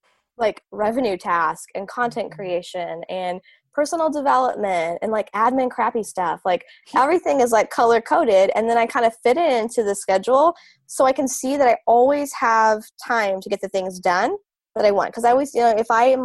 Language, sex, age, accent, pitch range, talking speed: English, female, 20-39, American, 190-245 Hz, 205 wpm